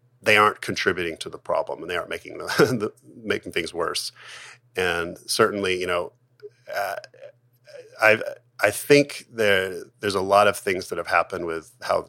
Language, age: English, 30-49